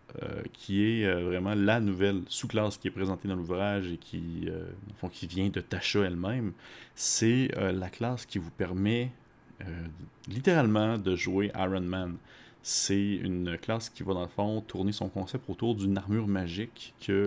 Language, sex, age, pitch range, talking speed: French, male, 30-49, 95-110 Hz, 180 wpm